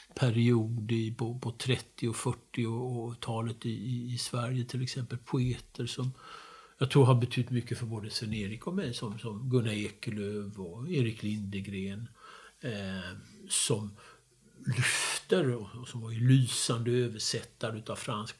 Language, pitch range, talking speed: English, 105-130 Hz, 115 wpm